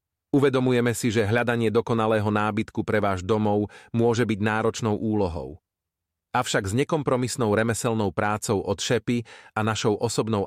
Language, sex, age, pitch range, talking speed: Slovak, male, 30-49, 95-115 Hz, 130 wpm